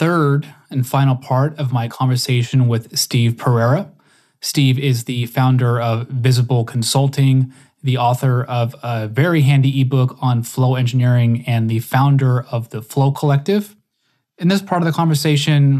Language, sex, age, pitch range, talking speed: English, male, 20-39, 125-145 Hz, 150 wpm